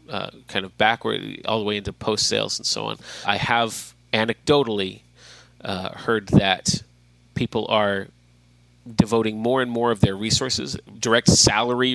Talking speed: 145 wpm